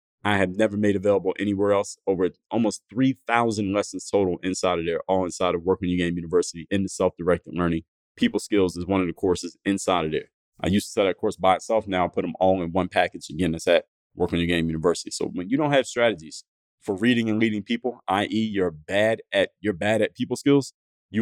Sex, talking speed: male, 230 wpm